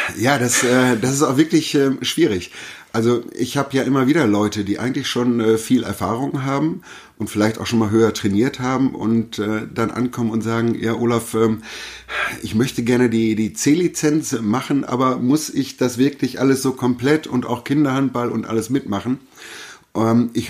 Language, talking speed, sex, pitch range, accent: German, 185 wpm, male, 110-130 Hz, German